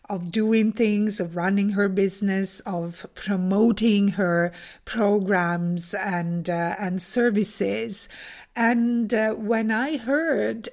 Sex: female